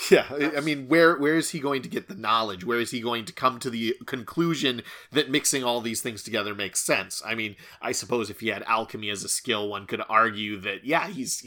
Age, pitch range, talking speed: 30-49, 115-140 Hz, 240 wpm